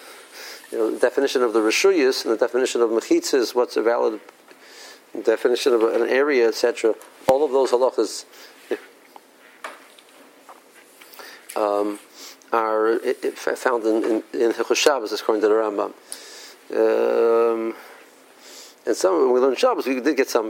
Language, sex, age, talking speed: English, male, 50-69, 145 wpm